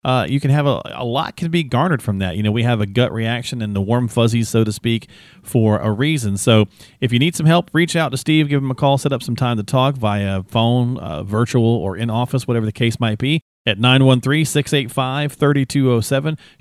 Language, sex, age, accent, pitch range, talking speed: English, male, 40-59, American, 105-140 Hz, 230 wpm